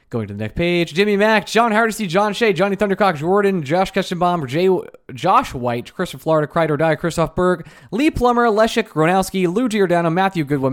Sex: male